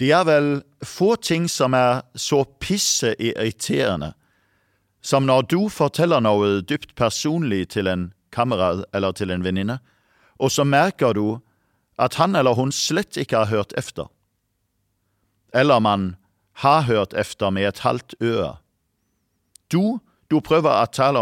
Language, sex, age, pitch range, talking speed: English, male, 50-69, 100-140 Hz, 145 wpm